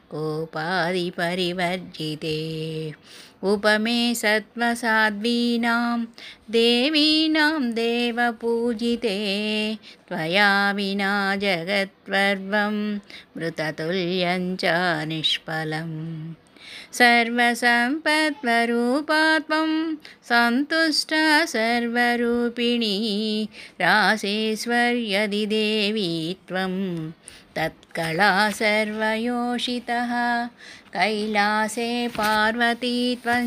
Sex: female